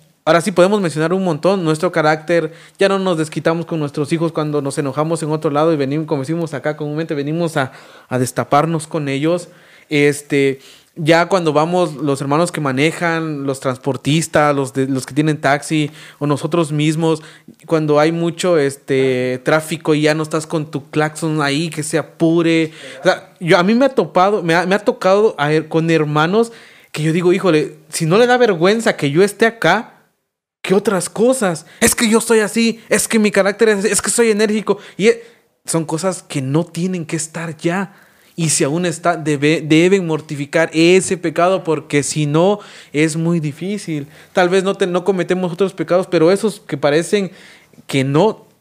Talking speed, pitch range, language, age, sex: 185 wpm, 150-185 Hz, Spanish, 30-49, male